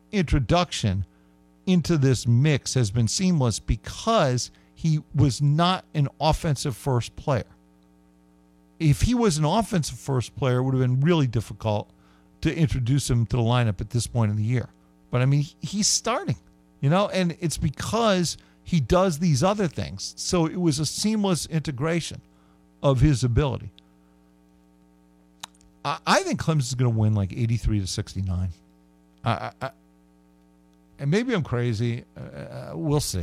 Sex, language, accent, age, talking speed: male, English, American, 50-69, 150 wpm